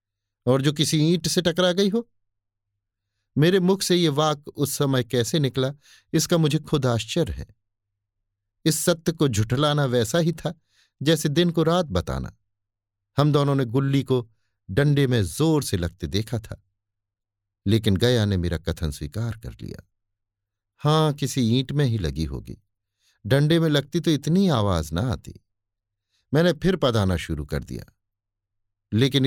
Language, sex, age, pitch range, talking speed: Hindi, male, 50-69, 100-145 Hz, 155 wpm